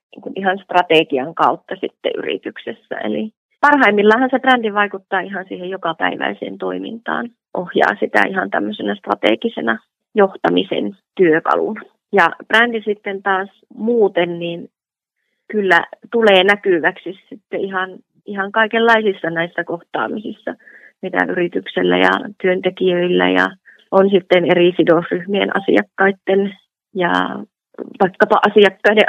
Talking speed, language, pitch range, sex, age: 100 wpm, Finnish, 175-210 Hz, female, 30-49